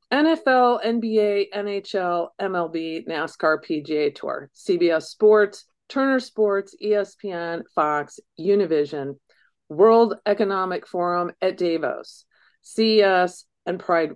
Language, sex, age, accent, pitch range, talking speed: English, female, 50-69, American, 165-230 Hz, 95 wpm